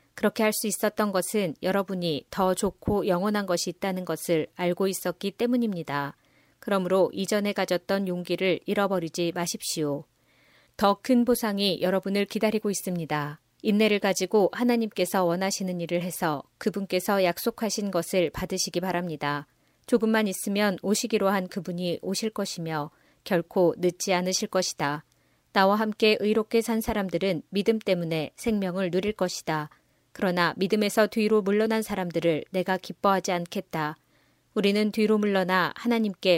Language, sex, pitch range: Korean, female, 175-215 Hz